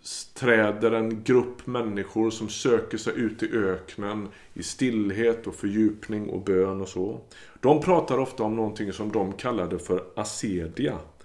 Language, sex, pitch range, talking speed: Swedish, male, 95-120 Hz, 150 wpm